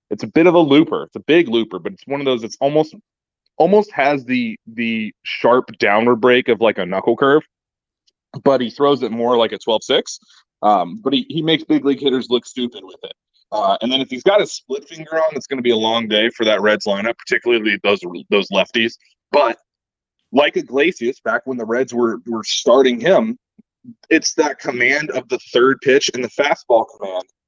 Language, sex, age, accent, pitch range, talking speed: English, male, 20-39, American, 120-190 Hz, 205 wpm